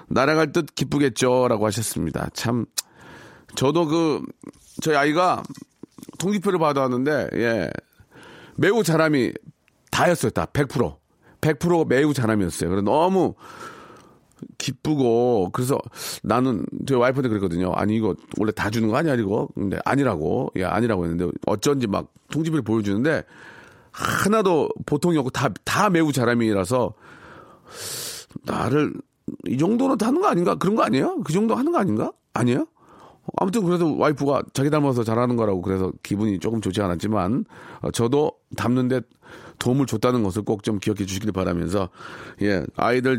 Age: 40-59